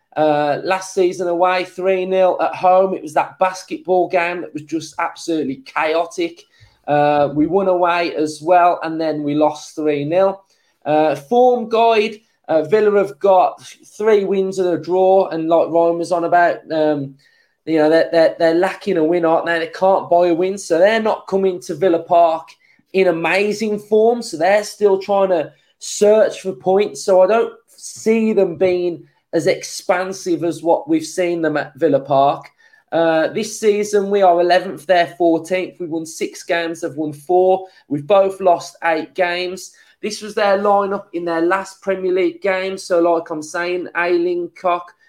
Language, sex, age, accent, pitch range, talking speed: English, male, 20-39, British, 165-195 Hz, 175 wpm